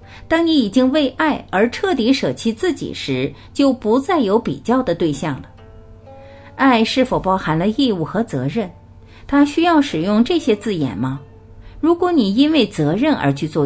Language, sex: Chinese, female